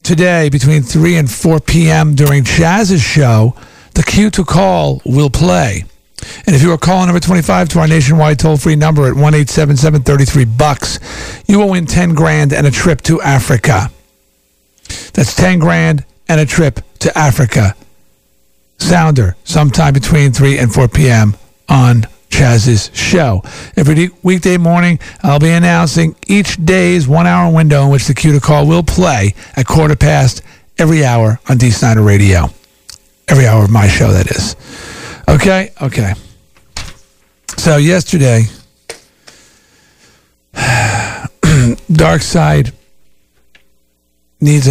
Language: English